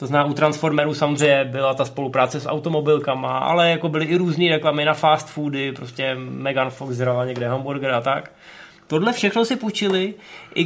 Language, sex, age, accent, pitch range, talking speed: Czech, male, 20-39, native, 135-160 Hz, 180 wpm